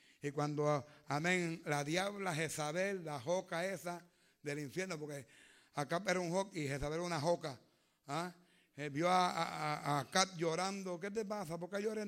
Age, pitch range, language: 60-79, 155-195 Hz, Spanish